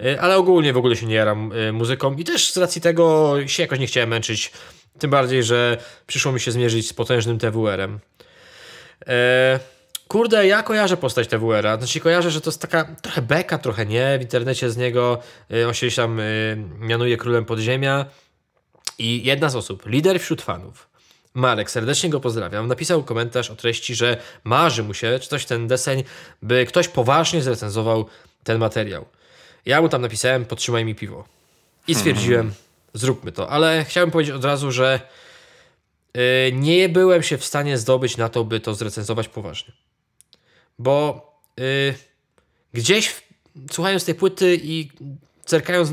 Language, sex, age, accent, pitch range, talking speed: Polish, male, 20-39, native, 120-160 Hz, 160 wpm